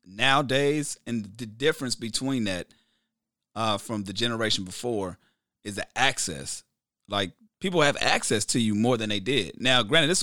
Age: 30-49